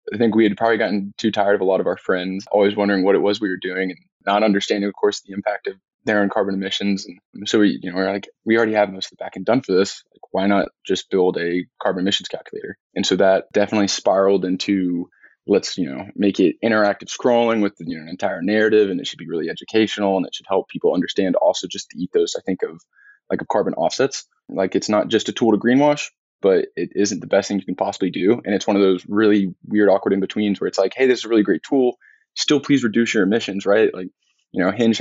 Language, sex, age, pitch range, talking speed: English, male, 20-39, 95-115 Hz, 255 wpm